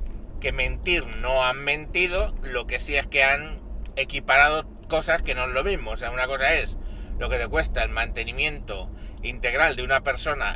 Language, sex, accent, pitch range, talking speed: Spanish, male, Spanish, 120-150 Hz, 190 wpm